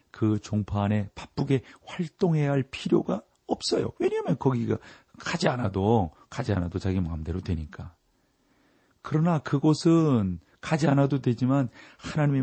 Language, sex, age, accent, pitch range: Korean, male, 40-59, native, 115-140 Hz